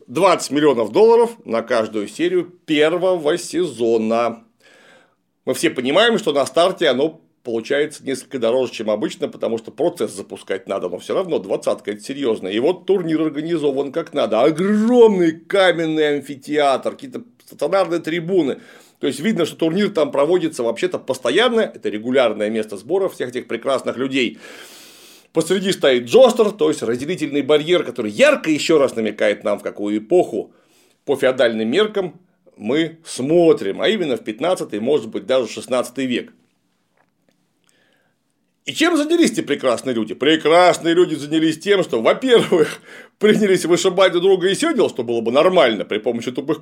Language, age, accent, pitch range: Russian, 40-59, native, 145-220 Hz